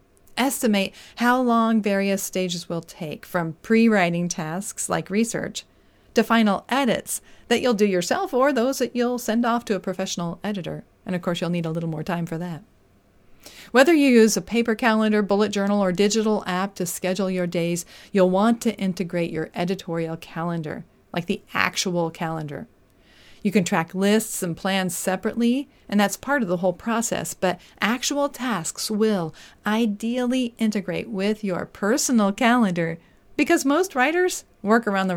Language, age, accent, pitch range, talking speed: English, 40-59, American, 175-225 Hz, 165 wpm